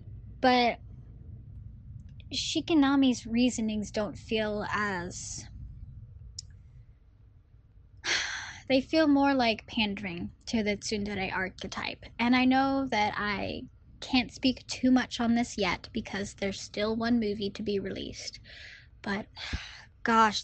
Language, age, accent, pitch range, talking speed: Spanish, 10-29, American, 175-240 Hz, 110 wpm